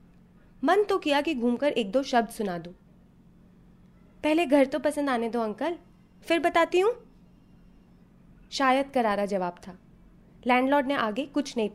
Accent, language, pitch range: native, Hindi, 195-310 Hz